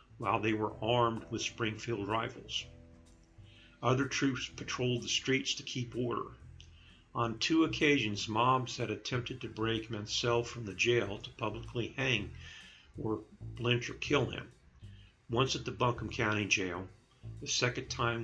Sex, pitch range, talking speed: male, 100-120 Hz, 145 wpm